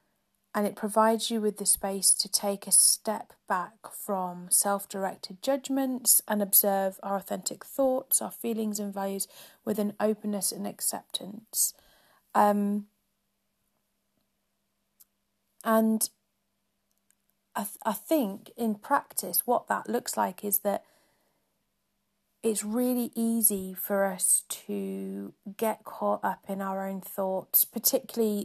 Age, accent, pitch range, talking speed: 30-49, British, 190-220 Hz, 120 wpm